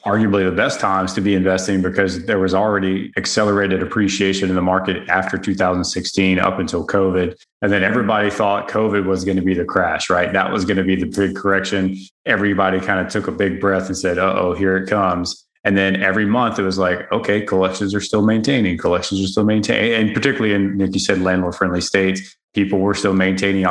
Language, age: English, 20-39